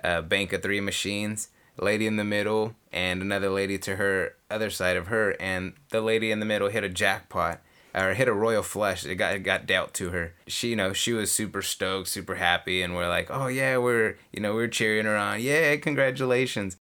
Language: English